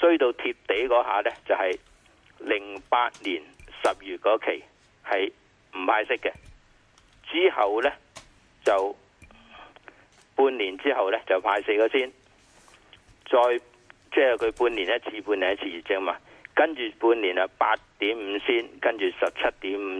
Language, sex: Chinese, male